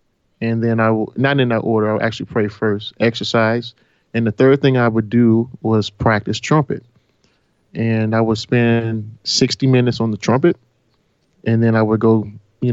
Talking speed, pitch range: 180 wpm, 110-130 Hz